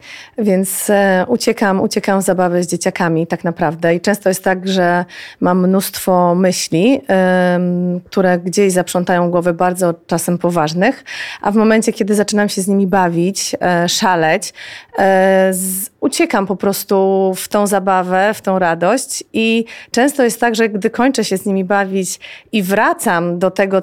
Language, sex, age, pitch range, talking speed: Polish, female, 30-49, 185-225 Hz, 160 wpm